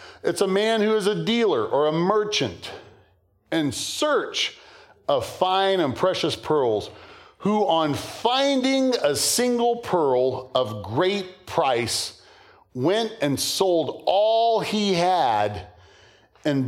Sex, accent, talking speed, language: male, American, 120 wpm, English